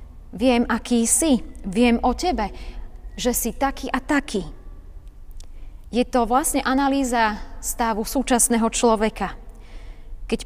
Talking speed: 110 wpm